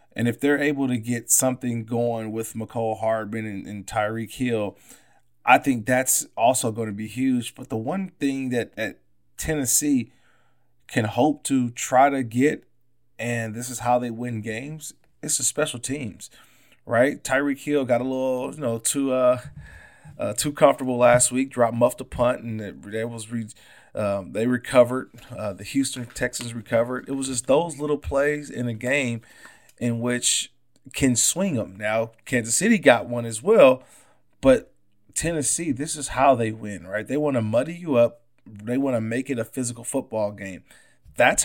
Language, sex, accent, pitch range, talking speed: English, male, American, 115-135 Hz, 180 wpm